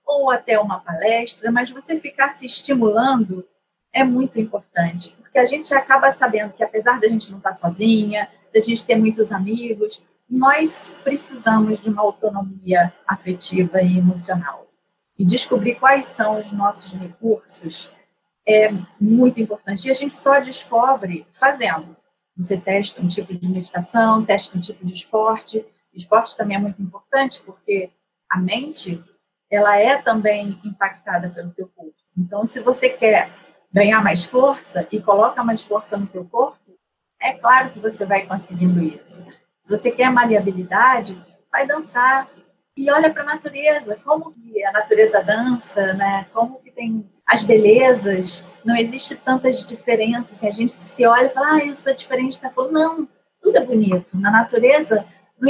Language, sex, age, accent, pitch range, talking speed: Portuguese, female, 40-59, Brazilian, 195-255 Hz, 160 wpm